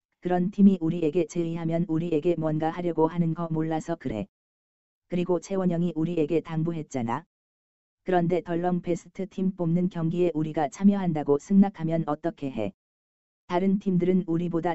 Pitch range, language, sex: 145-180 Hz, Korean, female